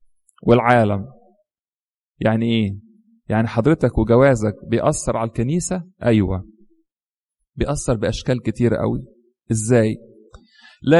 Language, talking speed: English, 85 wpm